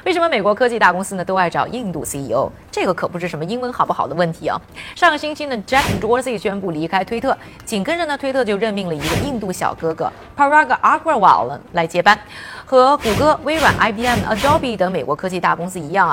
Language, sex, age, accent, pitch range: Chinese, female, 20-39, native, 180-275 Hz